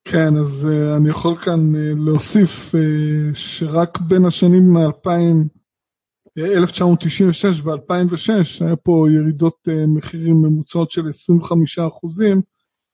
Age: 20-39